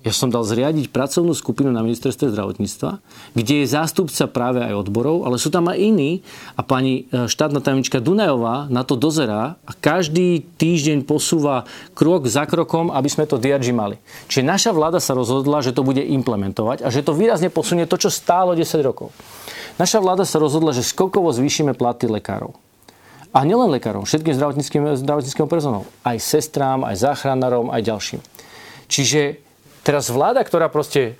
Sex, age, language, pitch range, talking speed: male, 40-59, Slovak, 125-165 Hz, 160 wpm